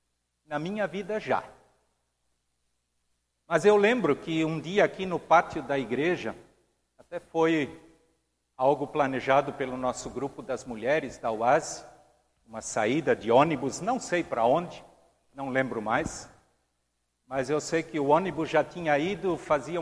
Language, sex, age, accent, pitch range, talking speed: Portuguese, male, 60-79, Brazilian, 100-155 Hz, 140 wpm